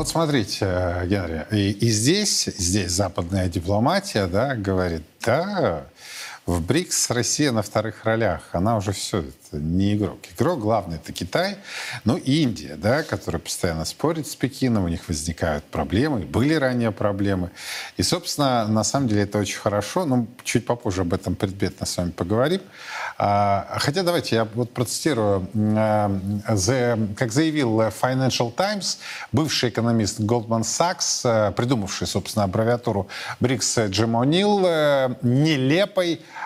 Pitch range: 100-130 Hz